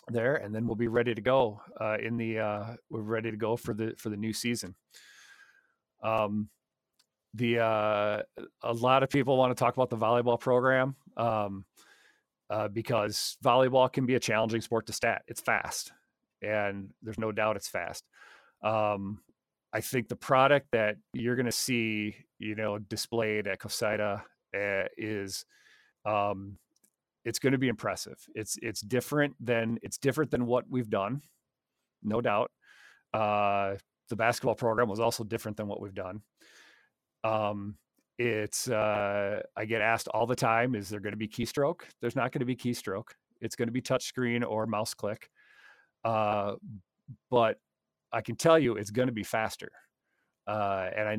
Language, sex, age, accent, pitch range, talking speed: English, male, 40-59, American, 105-125 Hz, 170 wpm